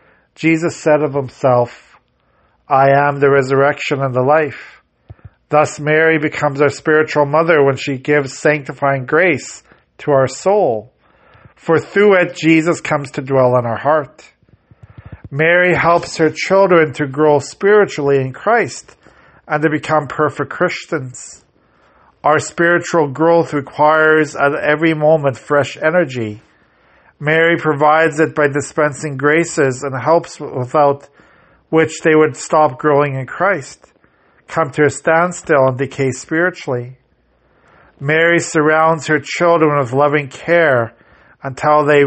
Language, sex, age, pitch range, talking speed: English, male, 40-59, 140-160 Hz, 130 wpm